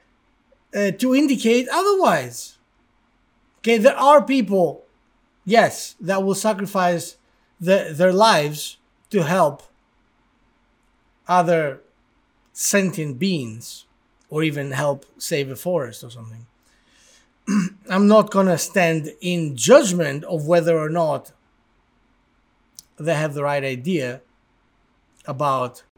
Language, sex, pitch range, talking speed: English, male, 150-215 Hz, 100 wpm